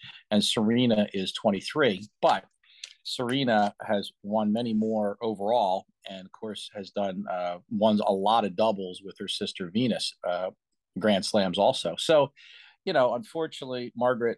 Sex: male